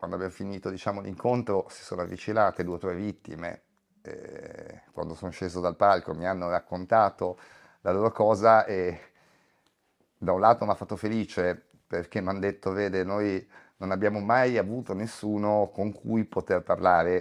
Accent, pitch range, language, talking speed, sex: native, 90-105 Hz, Italian, 155 wpm, male